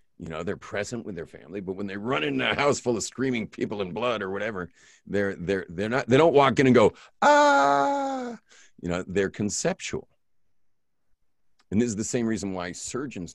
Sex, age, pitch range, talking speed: male, 40-59, 85-115 Hz, 200 wpm